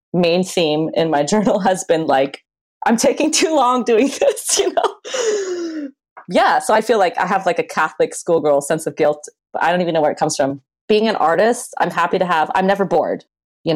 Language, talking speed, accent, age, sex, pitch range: English, 220 wpm, American, 30-49, female, 160-215 Hz